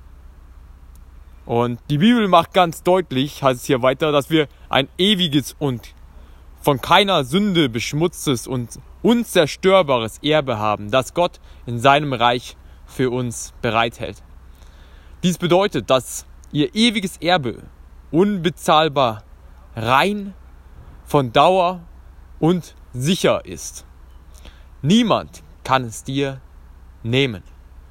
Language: German